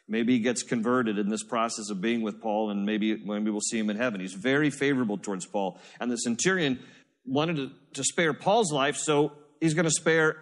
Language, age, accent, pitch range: English, 50-69, American, 125-160 Hz